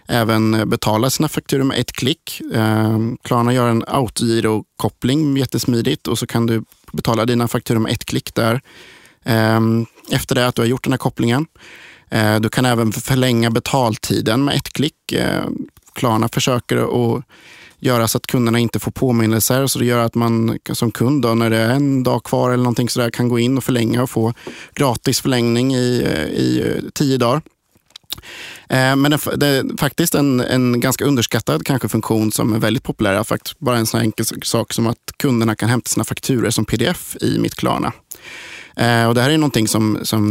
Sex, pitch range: male, 115-130 Hz